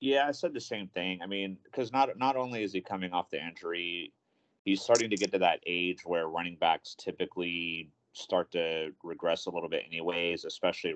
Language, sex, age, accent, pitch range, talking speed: English, male, 30-49, American, 80-95 Hz, 205 wpm